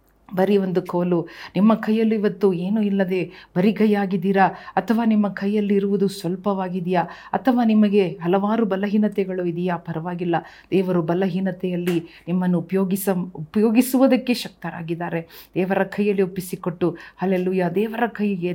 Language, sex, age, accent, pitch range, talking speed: Kannada, female, 40-59, native, 180-210 Hz, 105 wpm